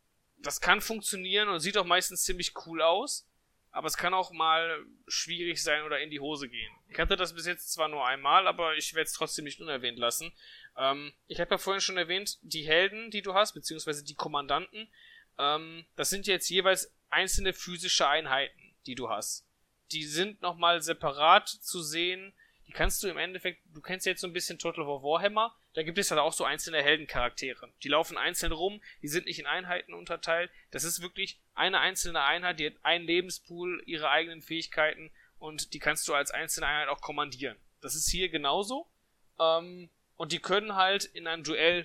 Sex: male